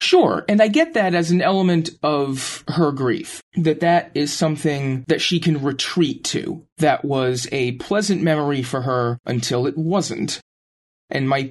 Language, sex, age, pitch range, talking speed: English, male, 30-49, 125-160 Hz, 165 wpm